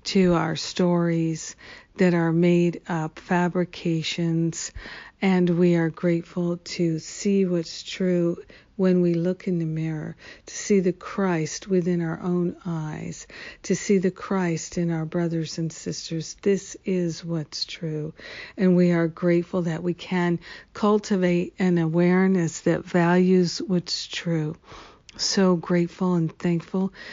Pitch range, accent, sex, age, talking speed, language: 165-180 Hz, American, female, 60-79, 135 wpm, English